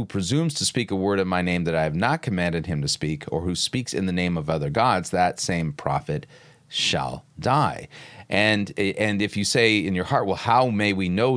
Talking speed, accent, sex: 230 wpm, American, male